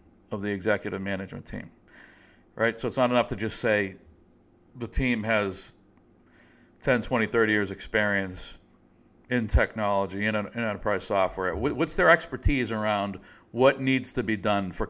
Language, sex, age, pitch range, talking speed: English, male, 50-69, 90-110 Hz, 145 wpm